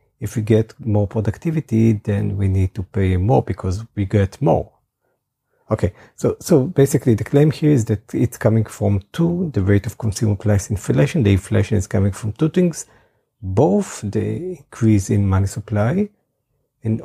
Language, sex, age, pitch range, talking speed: English, male, 50-69, 100-125 Hz, 170 wpm